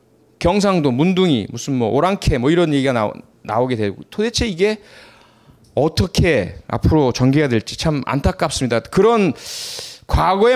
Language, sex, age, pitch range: Korean, male, 30-49, 120-170 Hz